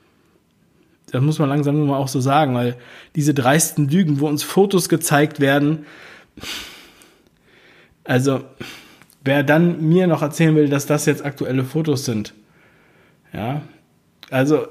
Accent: German